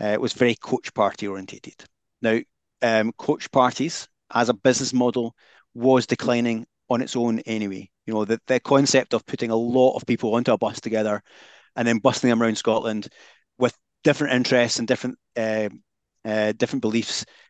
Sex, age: male, 30-49